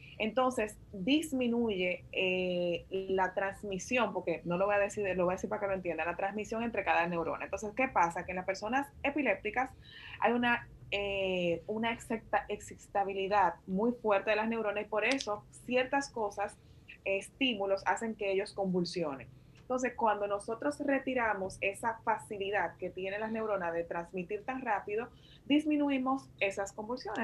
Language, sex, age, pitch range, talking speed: Spanish, female, 20-39, 190-230 Hz, 155 wpm